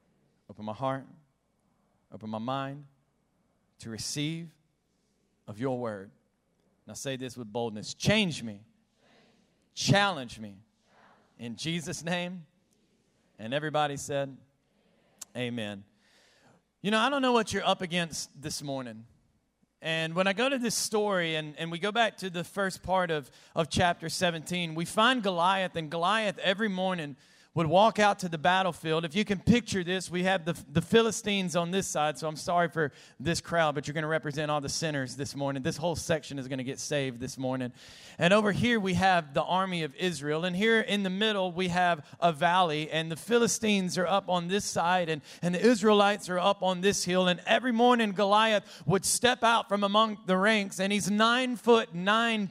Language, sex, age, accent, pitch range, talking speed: English, male, 40-59, American, 150-200 Hz, 185 wpm